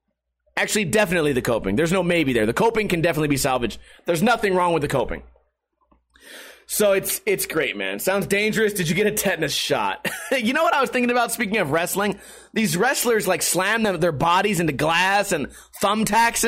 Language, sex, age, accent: English, male, 30-49, American